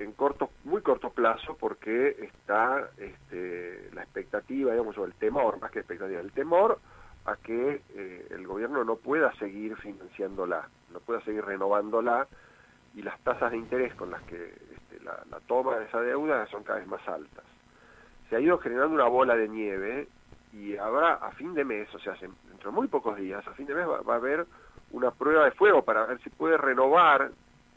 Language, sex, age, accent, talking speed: Spanish, male, 40-59, Argentinian, 195 wpm